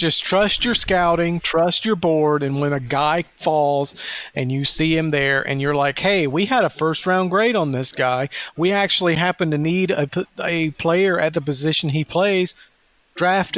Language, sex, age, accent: English, male, 40-59, American